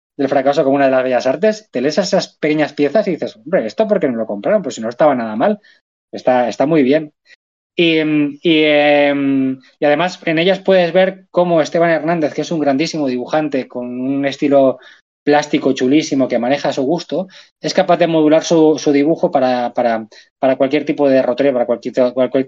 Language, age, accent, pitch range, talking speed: Spanish, 20-39, Spanish, 125-165 Hz, 205 wpm